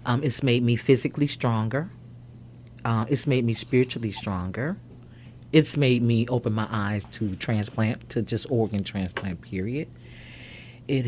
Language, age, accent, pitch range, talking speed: English, 40-59, American, 105-125 Hz, 140 wpm